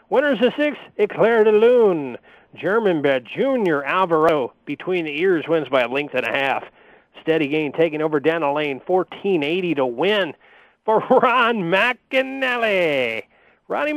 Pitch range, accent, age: 175-275 Hz, American, 40-59